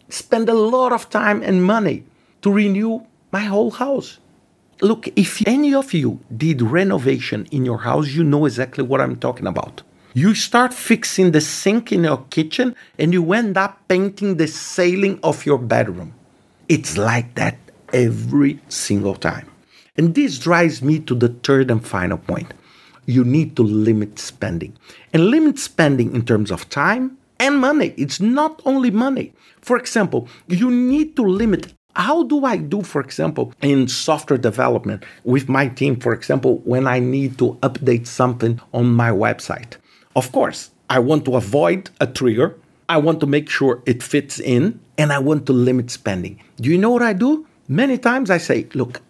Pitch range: 125-205 Hz